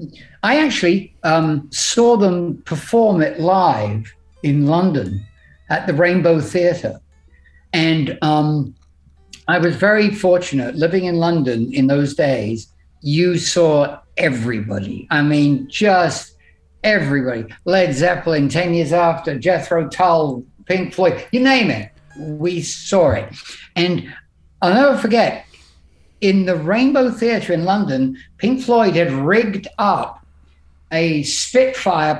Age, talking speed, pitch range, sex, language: 60-79, 120 wpm, 140-195 Hz, male, English